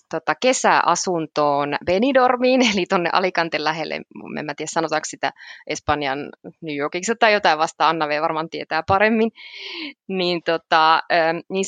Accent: native